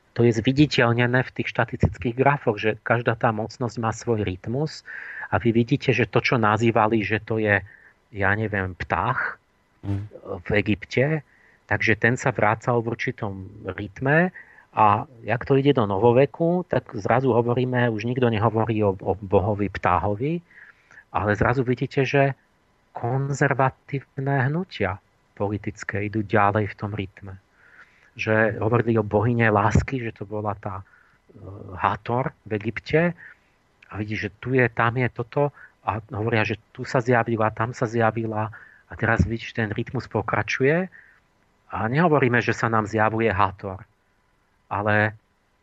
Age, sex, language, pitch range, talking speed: 40-59, male, Slovak, 105-130 Hz, 140 wpm